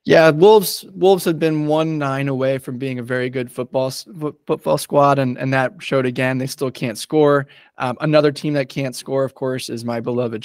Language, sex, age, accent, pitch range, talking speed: English, male, 20-39, American, 130-155 Hz, 205 wpm